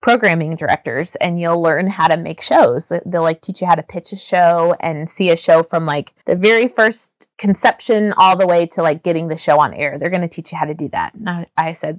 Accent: American